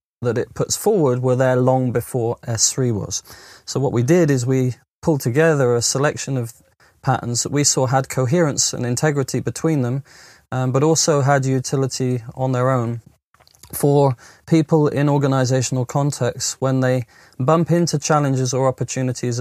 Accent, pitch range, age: British, 125-145 Hz, 20-39